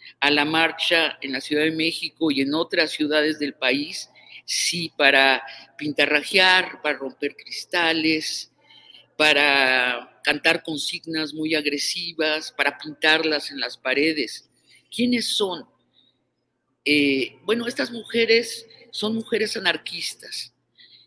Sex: female